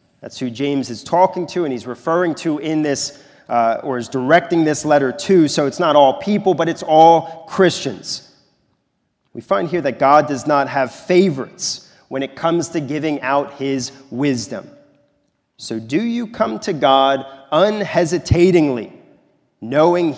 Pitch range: 140-180 Hz